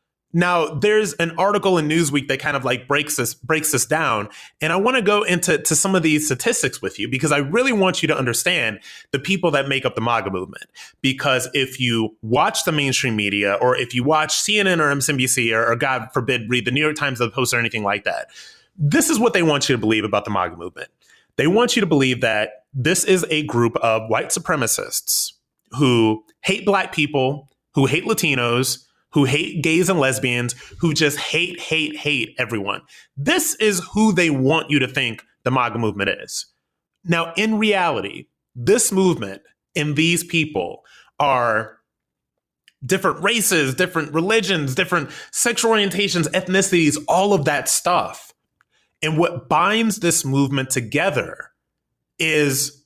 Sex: male